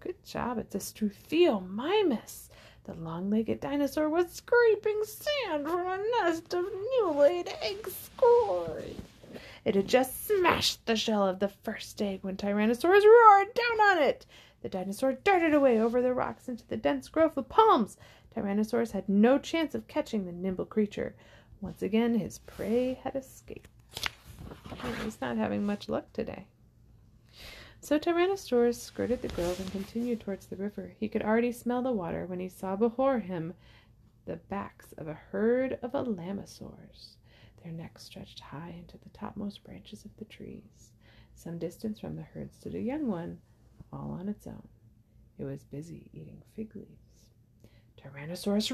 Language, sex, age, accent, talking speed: English, female, 30-49, American, 155 wpm